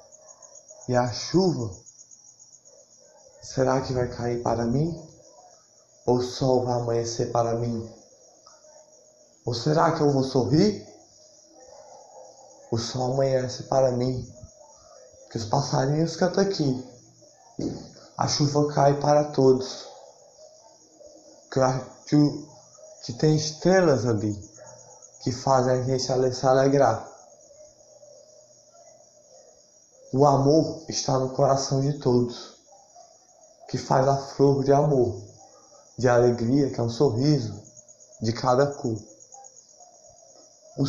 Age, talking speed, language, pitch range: 20-39, 105 wpm, Portuguese, 125-170 Hz